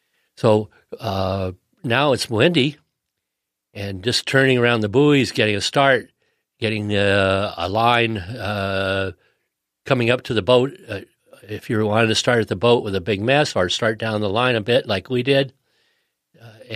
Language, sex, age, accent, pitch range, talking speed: English, male, 50-69, American, 100-125 Hz, 170 wpm